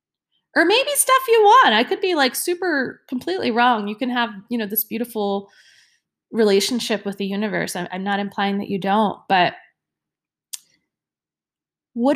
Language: English